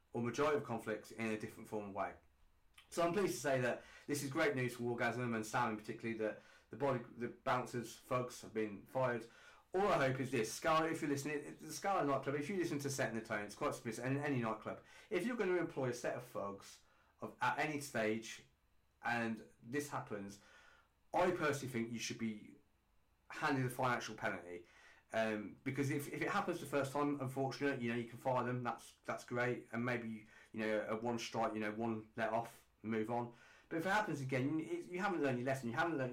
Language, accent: English, British